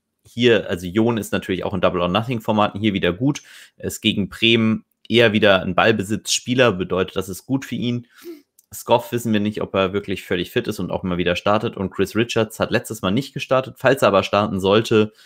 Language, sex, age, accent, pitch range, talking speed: German, male, 30-49, German, 90-105 Hz, 210 wpm